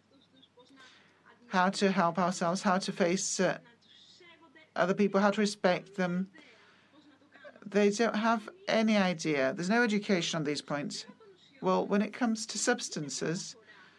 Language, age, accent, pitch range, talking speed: Greek, 50-69, British, 180-225 Hz, 135 wpm